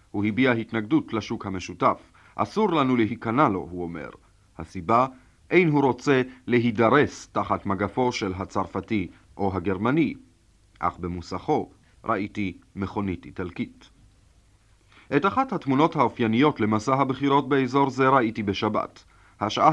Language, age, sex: Hebrew, 40-59, male